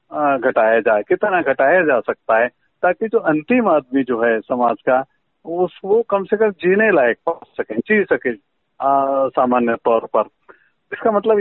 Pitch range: 145-200 Hz